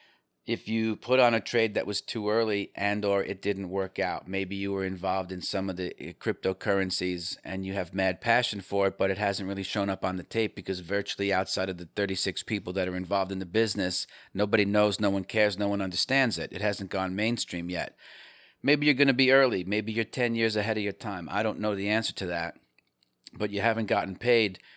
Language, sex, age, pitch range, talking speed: English, male, 40-59, 95-110 Hz, 230 wpm